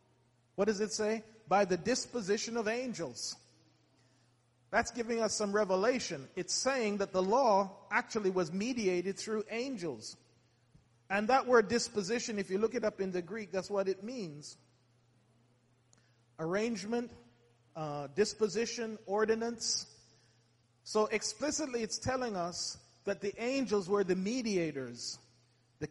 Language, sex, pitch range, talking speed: English, male, 150-225 Hz, 130 wpm